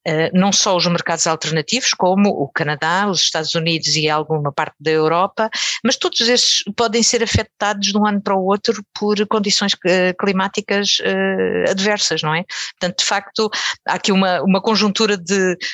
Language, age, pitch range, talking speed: Portuguese, 50-69, 165-205 Hz, 165 wpm